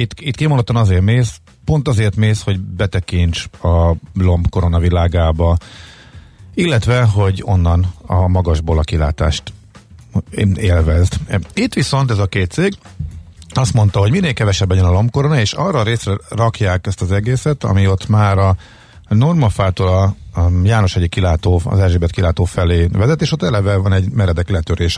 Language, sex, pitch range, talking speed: Hungarian, male, 90-110 Hz, 160 wpm